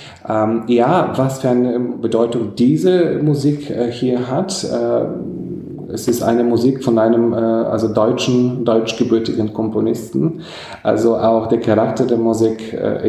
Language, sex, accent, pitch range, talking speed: German, male, German, 100-115 Hz, 140 wpm